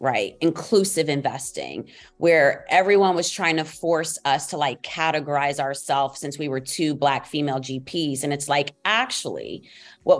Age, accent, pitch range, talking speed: 30-49, American, 145-185 Hz, 155 wpm